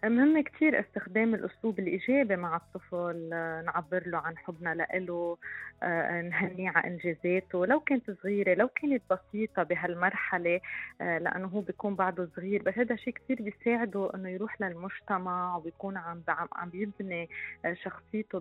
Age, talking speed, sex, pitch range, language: 20-39, 130 wpm, female, 180-210 Hz, Arabic